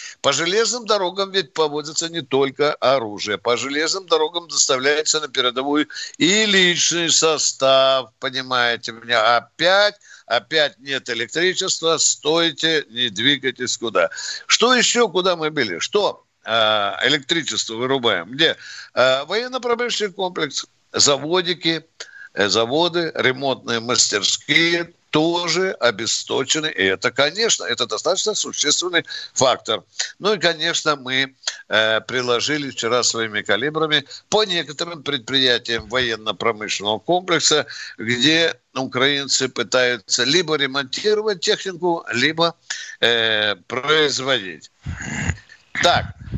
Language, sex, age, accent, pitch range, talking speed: Russian, male, 60-79, native, 125-175 Hz, 95 wpm